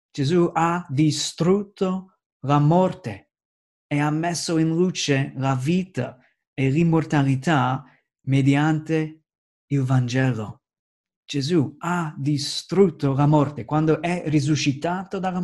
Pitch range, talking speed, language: 135-165 Hz, 100 wpm, Italian